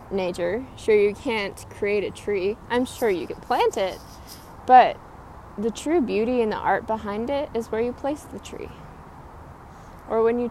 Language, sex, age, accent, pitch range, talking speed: English, female, 20-39, American, 210-280 Hz, 175 wpm